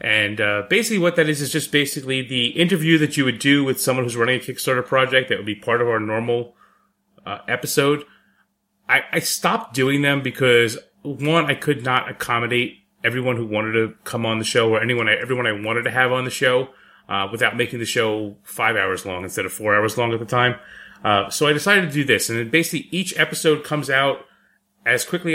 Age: 30-49